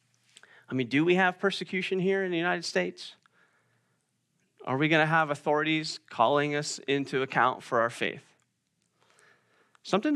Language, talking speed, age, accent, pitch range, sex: English, 150 wpm, 30-49, American, 115-150 Hz, male